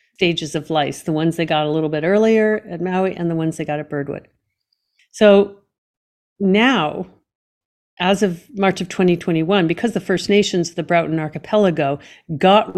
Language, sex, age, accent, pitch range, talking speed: English, female, 50-69, American, 165-215 Hz, 165 wpm